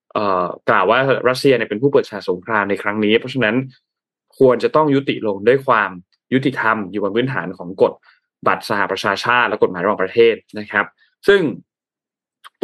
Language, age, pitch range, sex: Thai, 20-39, 105-140 Hz, male